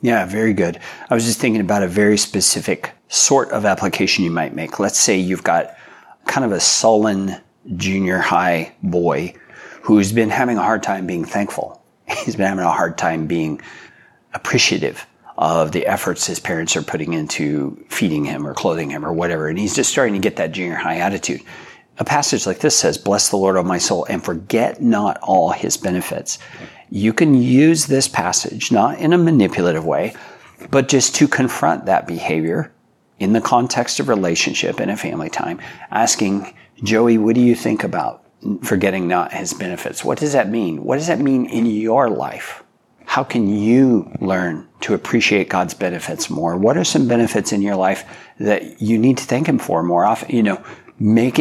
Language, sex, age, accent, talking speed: English, male, 40-59, American, 190 wpm